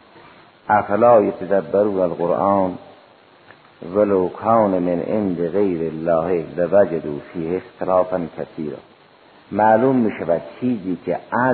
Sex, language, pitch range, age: male, Persian, 85-110 Hz, 50-69